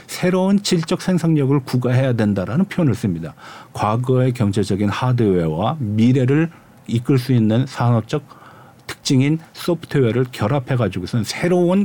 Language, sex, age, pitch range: Korean, male, 50-69, 115-160 Hz